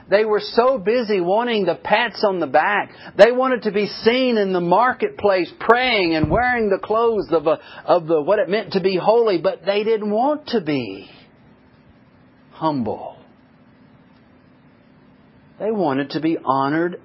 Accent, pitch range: American, 155-230 Hz